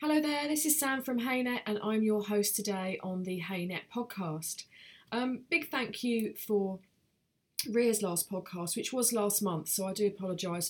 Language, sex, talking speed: English, female, 180 wpm